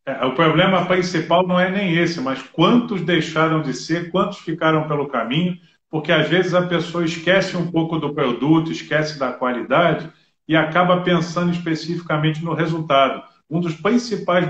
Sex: male